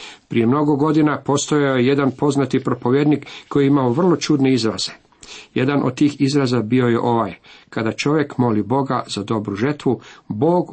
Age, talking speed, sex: 50-69, 160 wpm, male